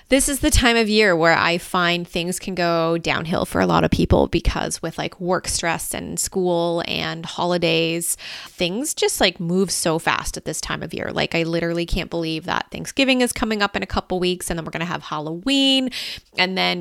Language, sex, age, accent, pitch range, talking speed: English, female, 20-39, American, 170-210 Hz, 220 wpm